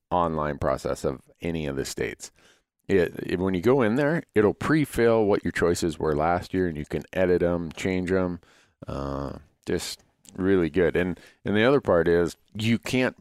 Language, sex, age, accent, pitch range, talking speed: English, male, 40-59, American, 75-95 Hz, 185 wpm